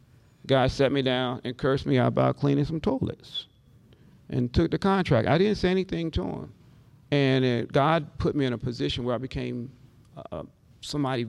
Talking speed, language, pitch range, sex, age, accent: 185 wpm, English, 125-145 Hz, male, 40-59, American